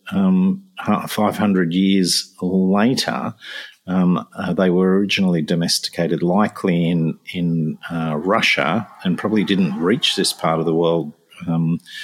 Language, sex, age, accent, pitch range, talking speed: English, male, 50-69, Australian, 90-150 Hz, 125 wpm